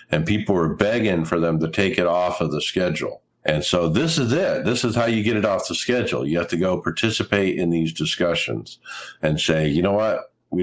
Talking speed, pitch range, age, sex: 230 wpm, 80-105 Hz, 50-69, male